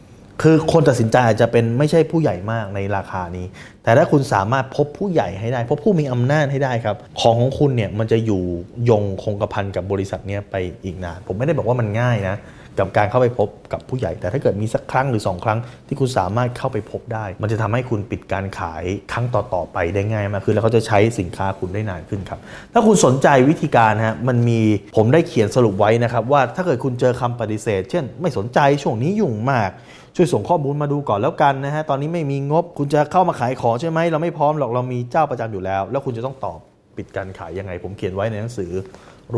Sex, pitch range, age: male, 95-130 Hz, 20-39